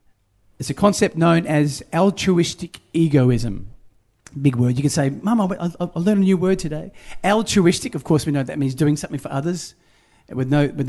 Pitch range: 135-175 Hz